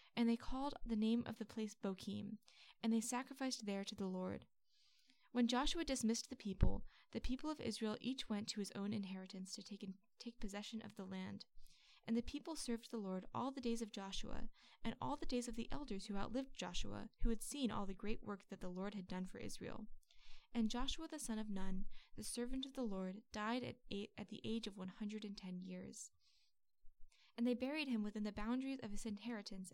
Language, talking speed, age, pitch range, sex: English, 210 wpm, 10-29, 200-245 Hz, female